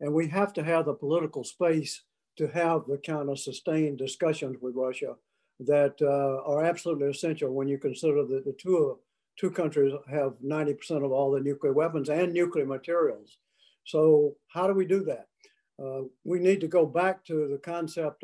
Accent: American